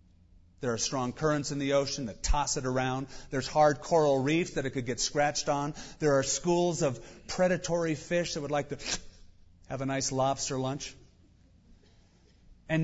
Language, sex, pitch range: English, male, 110-165 Hz